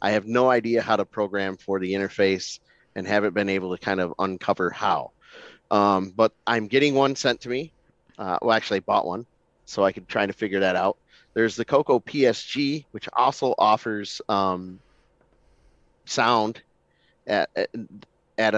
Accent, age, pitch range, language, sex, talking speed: American, 30-49, 95-115 Hz, English, male, 170 wpm